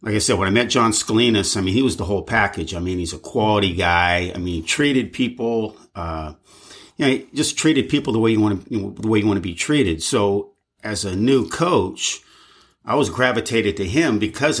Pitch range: 95-115 Hz